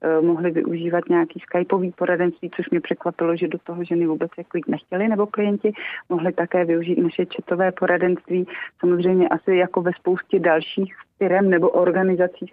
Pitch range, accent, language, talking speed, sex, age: 180-195 Hz, native, Czech, 155 wpm, female, 30-49